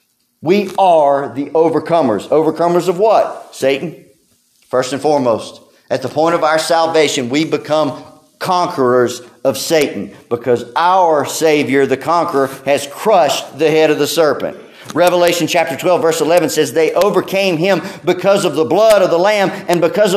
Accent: American